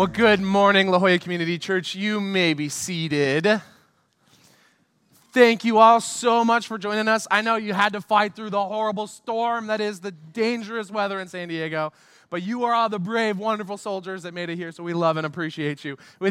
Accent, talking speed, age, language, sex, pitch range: American, 205 wpm, 20-39, English, male, 180-225 Hz